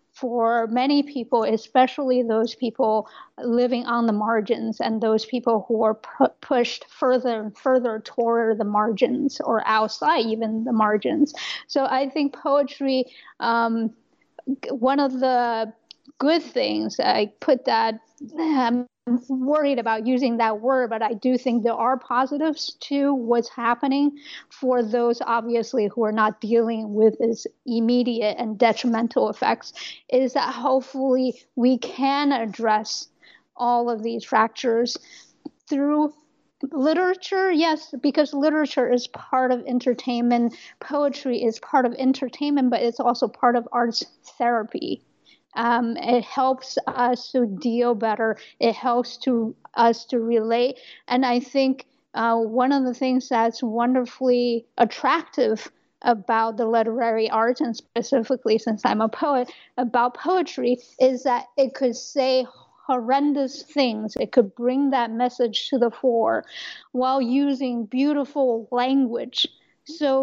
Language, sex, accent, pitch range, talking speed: English, female, American, 230-270 Hz, 135 wpm